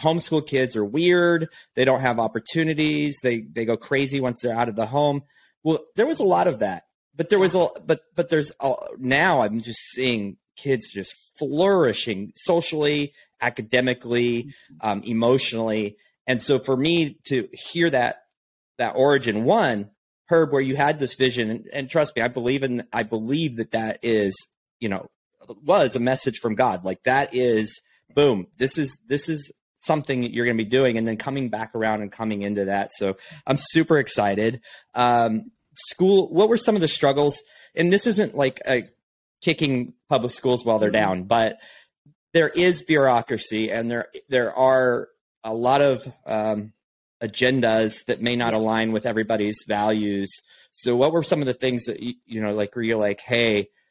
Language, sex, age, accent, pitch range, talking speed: English, male, 30-49, American, 110-145 Hz, 180 wpm